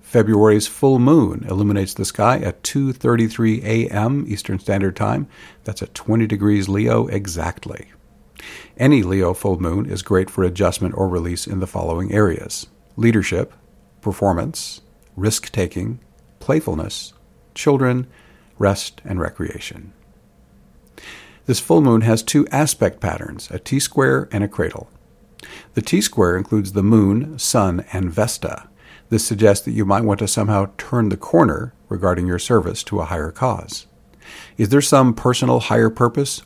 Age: 50-69